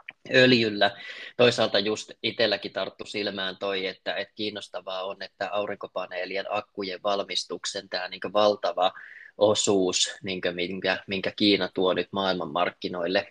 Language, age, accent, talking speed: Finnish, 20-39, native, 120 wpm